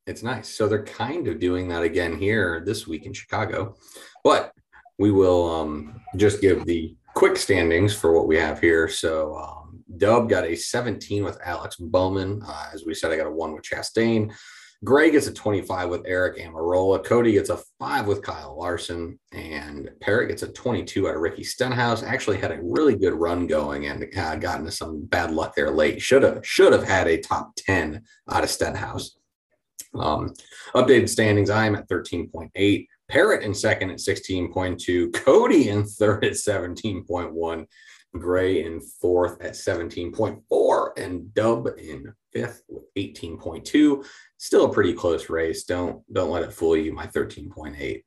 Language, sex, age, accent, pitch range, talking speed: English, male, 30-49, American, 85-110 Hz, 170 wpm